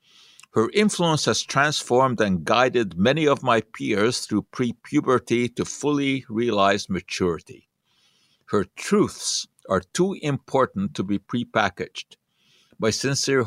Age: 60-79